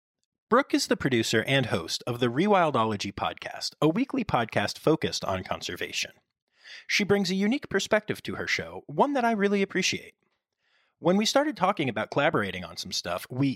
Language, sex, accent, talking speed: English, male, American, 175 wpm